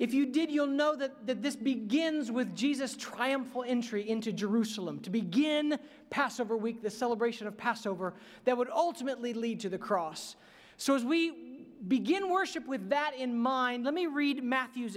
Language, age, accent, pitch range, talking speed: English, 40-59, American, 220-280 Hz, 170 wpm